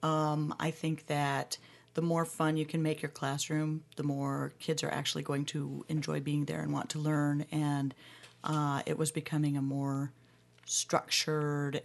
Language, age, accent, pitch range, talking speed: English, 40-59, American, 135-165 Hz, 170 wpm